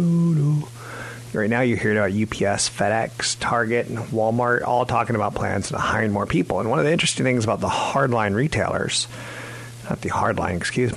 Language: English